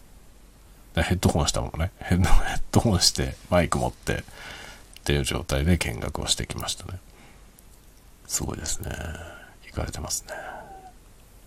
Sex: male